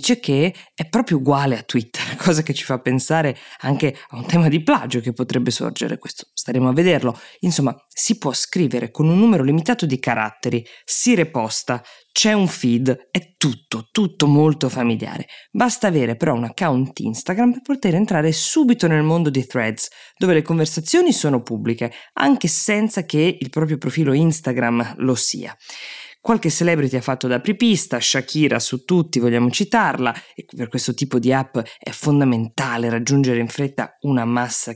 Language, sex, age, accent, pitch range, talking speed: Italian, female, 20-39, native, 125-170 Hz, 165 wpm